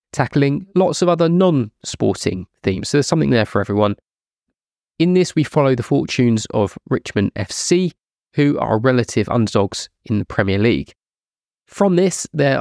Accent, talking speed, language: British, 150 wpm, English